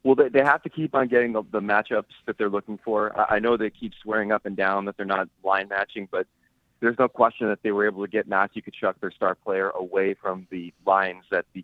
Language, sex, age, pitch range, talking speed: English, male, 30-49, 95-115 Hz, 240 wpm